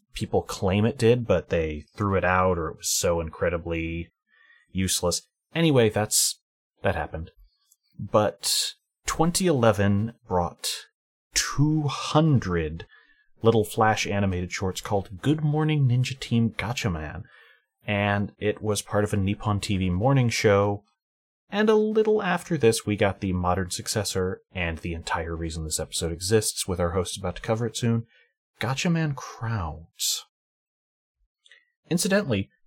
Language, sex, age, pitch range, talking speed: English, male, 30-49, 90-125 Hz, 130 wpm